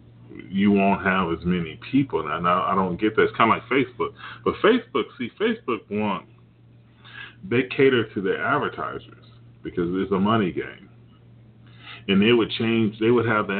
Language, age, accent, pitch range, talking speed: English, 30-49, American, 90-120 Hz, 175 wpm